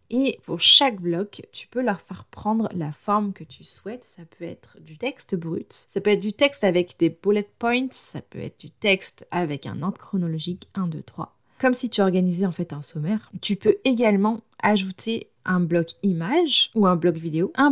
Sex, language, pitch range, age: female, French, 175-215 Hz, 30-49